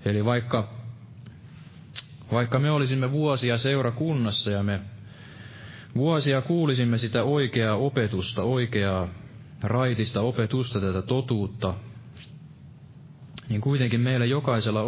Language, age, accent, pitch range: Finnish, 20-39, native, 105-140 Hz